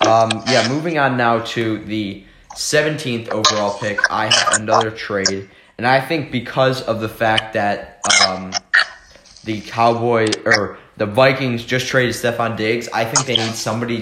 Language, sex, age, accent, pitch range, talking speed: English, male, 20-39, American, 105-120 Hz, 160 wpm